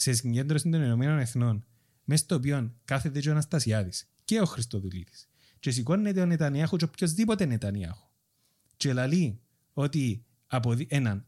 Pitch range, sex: 110-155 Hz, male